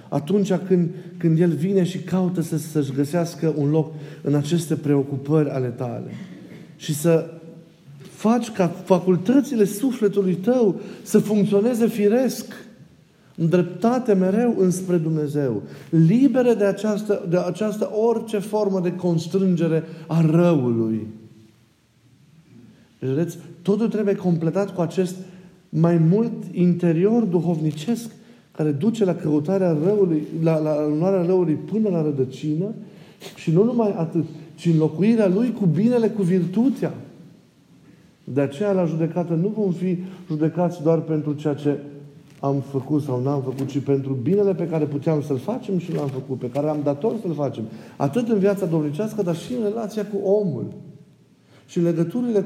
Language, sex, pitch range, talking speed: Romanian, male, 155-200 Hz, 140 wpm